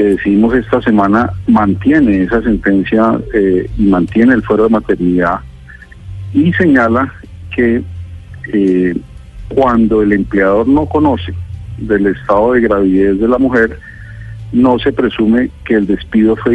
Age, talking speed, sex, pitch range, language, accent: 40-59, 130 wpm, male, 95-115 Hz, Spanish, Colombian